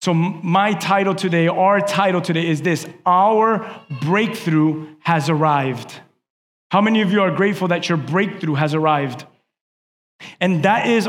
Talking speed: 145 wpm